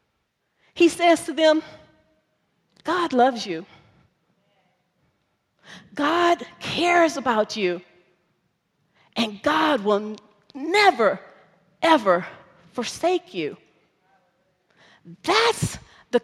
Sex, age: female, 40-59